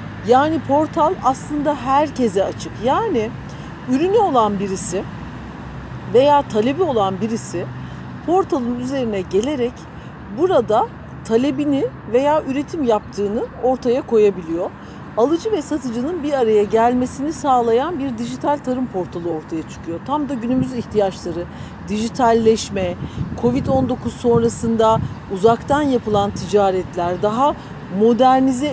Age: 50-69